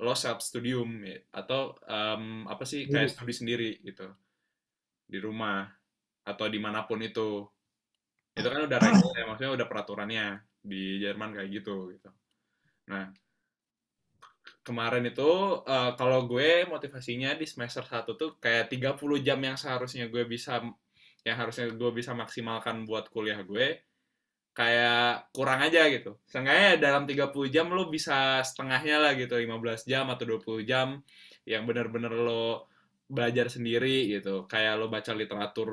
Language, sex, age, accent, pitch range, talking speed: Indonesian, male, 10-29, native, 105-130 Hz, 140 wpm